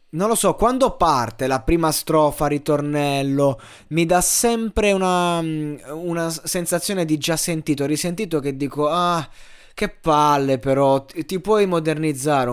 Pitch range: 130-175 Hz